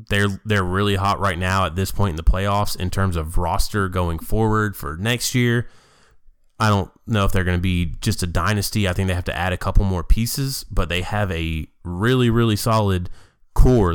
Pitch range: 90-115 Hz